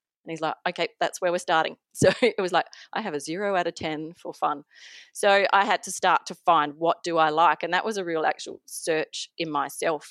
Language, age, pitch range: English, 30-49, 160-200 Hz